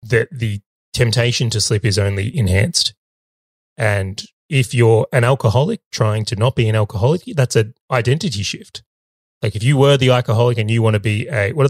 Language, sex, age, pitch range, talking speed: English, male, 20-39, 100-125 Hz, 190 wpm